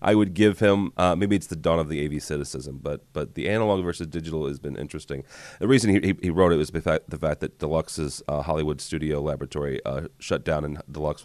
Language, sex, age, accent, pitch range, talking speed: English, male, 30-49, American, 80-105 Hz, 240 wpm